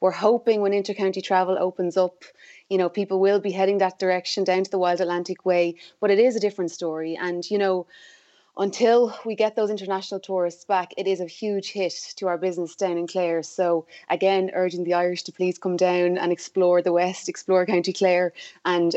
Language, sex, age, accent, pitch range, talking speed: English, female, 20-39, Irish, 175-195 Hz, 205 wpm